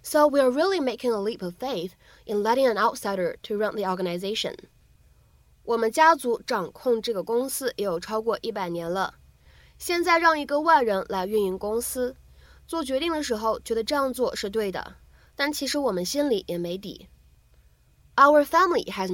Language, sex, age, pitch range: Chinese, female, 20-39, 205-285 Hz